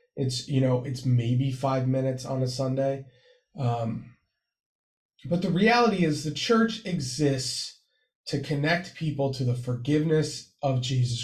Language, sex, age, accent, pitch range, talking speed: English, male, 30-49, American, 130-170 Hz, 140 wpm